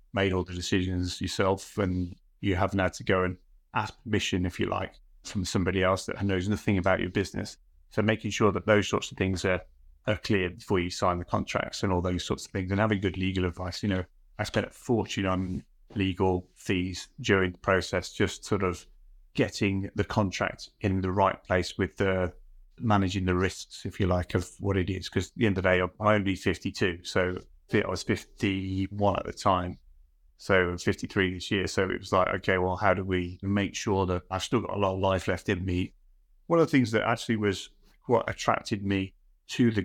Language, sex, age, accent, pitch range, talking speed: English, male, 30-49, British, 90-105 Hz, 215 wpm